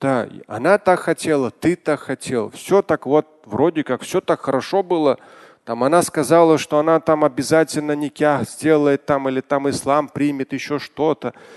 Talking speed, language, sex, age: 160 wpm, Russian, male, 20-39